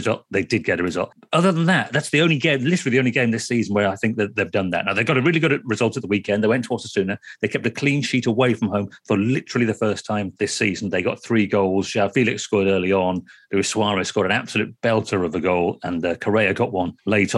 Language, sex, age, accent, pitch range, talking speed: English, male, 40-59, British, 100-125 Hz, 265 wpm